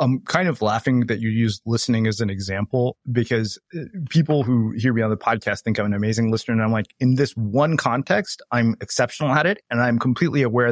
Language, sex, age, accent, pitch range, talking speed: English, male, 30-49, American, 110-135 Hz, 220 wpm